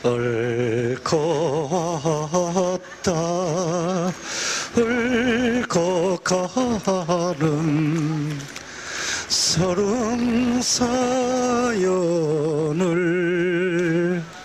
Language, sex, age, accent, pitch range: Korean, male, 40-59, native, 155-235 Hz